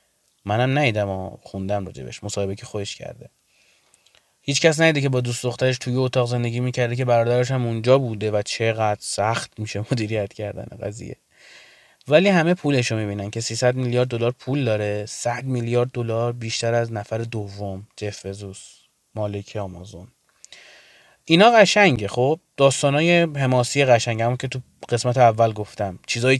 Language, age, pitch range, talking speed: Persian, 20-39, 110-150 Hz, 150 wpm